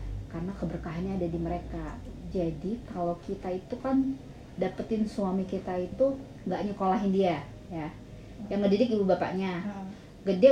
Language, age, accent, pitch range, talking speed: Indonesian, 30-49, native, 170-215 Hz, 130 wpm